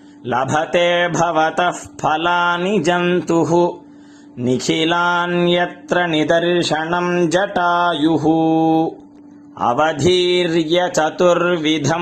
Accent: native